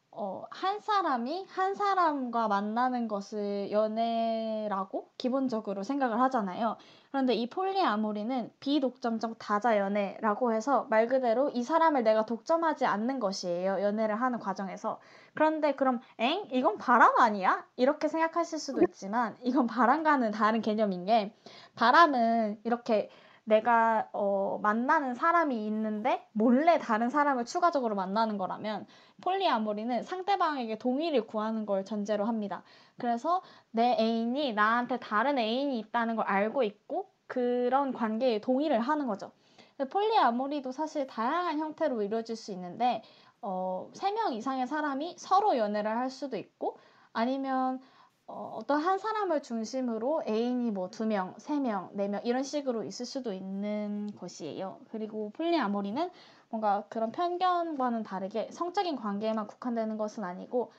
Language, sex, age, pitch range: Korean, female, 20-39, 215-295 Hz